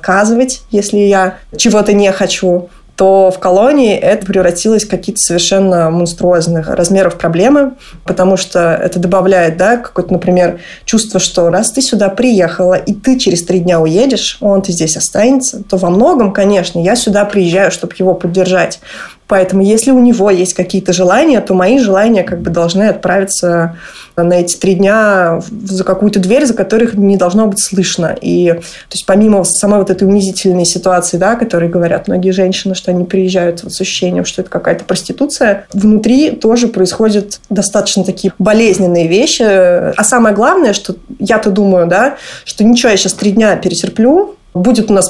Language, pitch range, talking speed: Russian, 180-215 Hz, 160 wpm